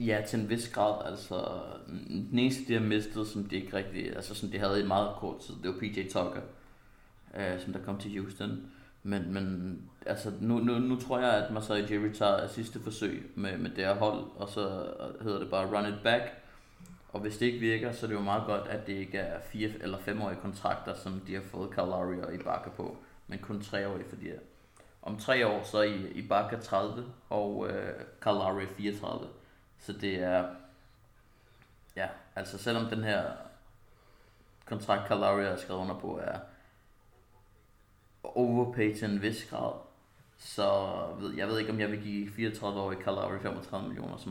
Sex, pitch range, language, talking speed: male, 95-115 Hz, Danish, 190 wpm